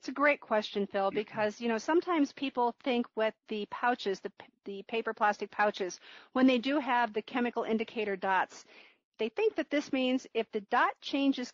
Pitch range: 215-265 Hz